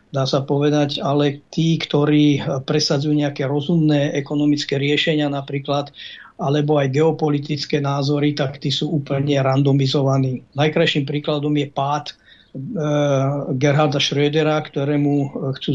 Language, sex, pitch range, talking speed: Slovak, male, 135-150 Hz, 110 wpm